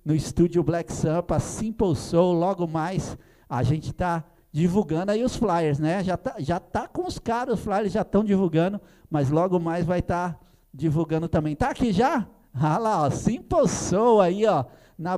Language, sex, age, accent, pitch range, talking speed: Portuguese, male, 50-69, Brazilian, 160-220 Hz, 185 wpm